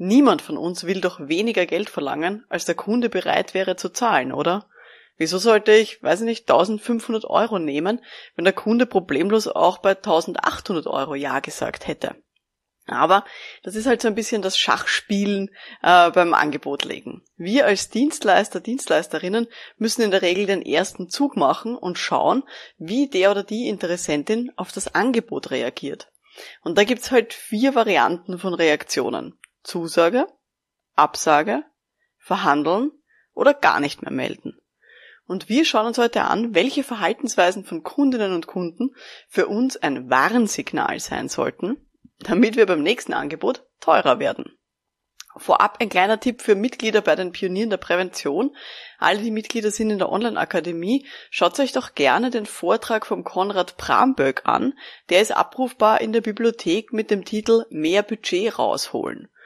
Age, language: 20-39, German